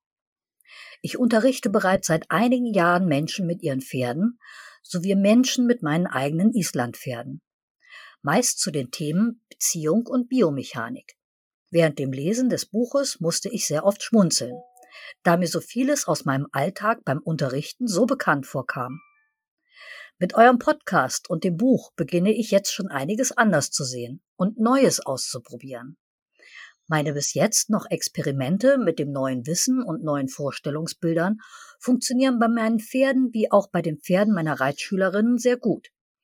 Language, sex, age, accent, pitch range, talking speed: German, female, 50-69, German, 150-240 Hz, 145 wpm